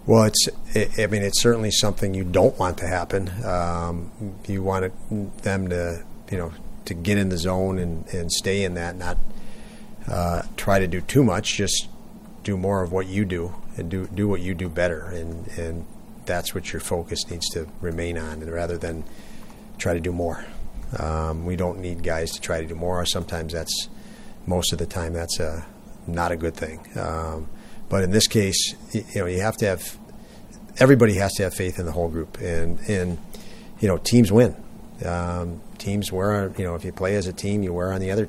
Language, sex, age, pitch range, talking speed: English, male, 40-59, 85-100 Hz, 205 wpm